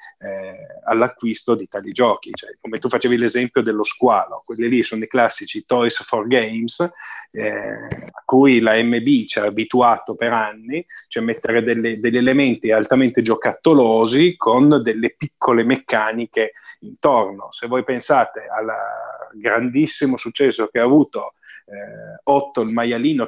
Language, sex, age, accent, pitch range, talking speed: Italian, male, 30-49, native, 115-130 Hz, 135 wpm